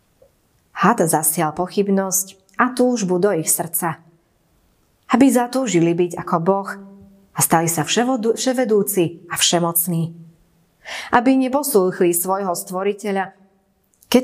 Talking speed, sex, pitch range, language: 100 wpm, female, 175-215 Hz, Slovak